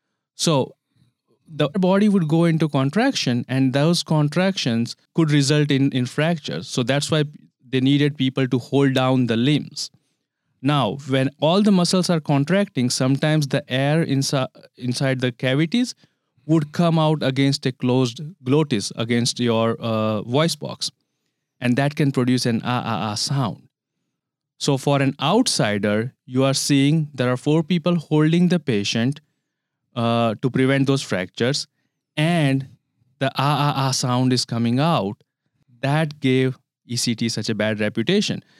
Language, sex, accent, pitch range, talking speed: English, male, Indian, 125-155 Hz, 145 wpm